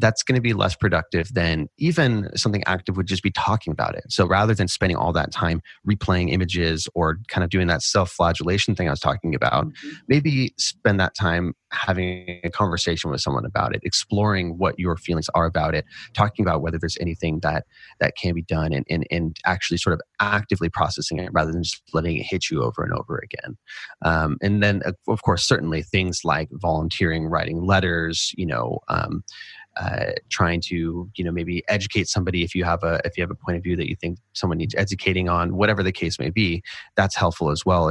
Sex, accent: male, American